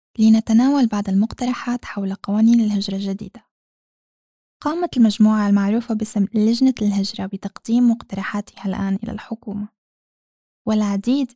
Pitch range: 205-245 Hz